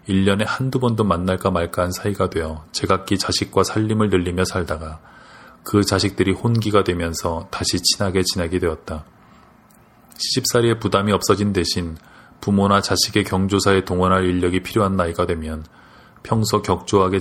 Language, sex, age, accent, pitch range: Korean, male, 20-39, native, 90-100 Hz